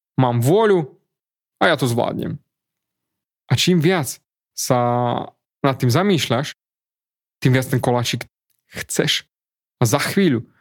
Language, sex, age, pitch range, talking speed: Slovak, male, 30-49, 125-165 Hz, 120 wpm